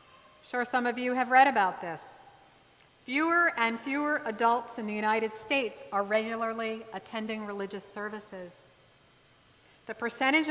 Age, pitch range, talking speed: 40-59, 195-270 Hz, 130 wpm